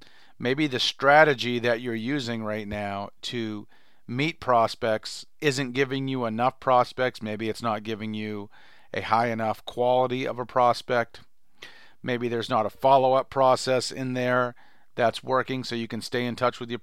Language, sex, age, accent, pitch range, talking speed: English, male, 40-59, American, 120-140 Hz, 165 wpm